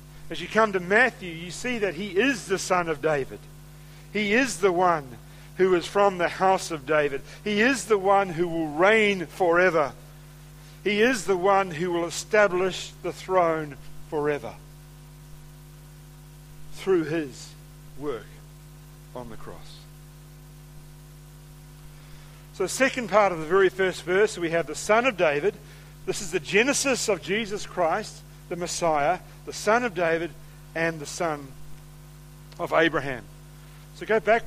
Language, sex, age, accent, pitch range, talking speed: English, male, 50-69, Australian, 150-180 Hz, 150 wpm